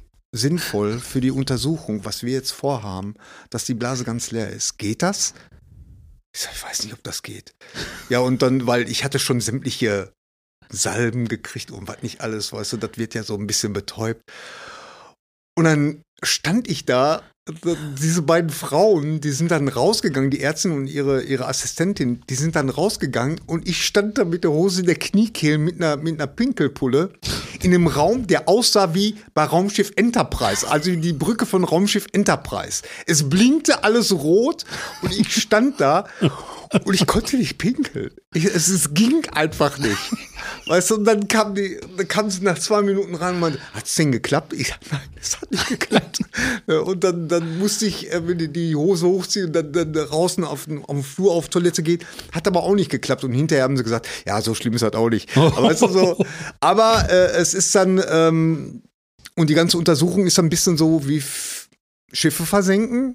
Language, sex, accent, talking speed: German, male, German, 195 wpm